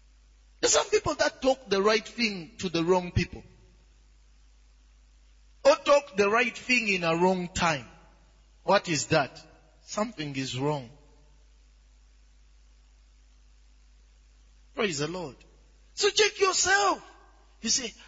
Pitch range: 120-200 Hz